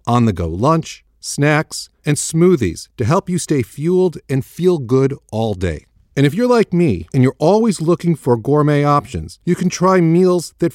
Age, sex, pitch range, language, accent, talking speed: 40-59, male, 105-165 Hz, English, American, 180 wpm